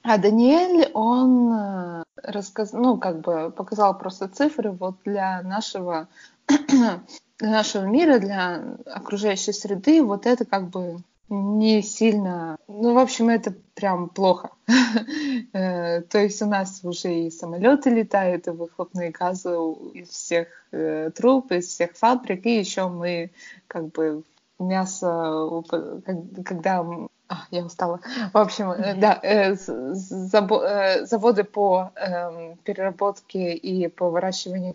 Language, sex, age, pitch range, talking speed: Russian, female, 20-39, 180-225 Hz, 125 wpm